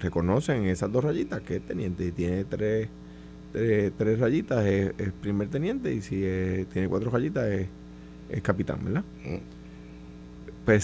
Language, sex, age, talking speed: Spanish, male, 30-49, 155 wpm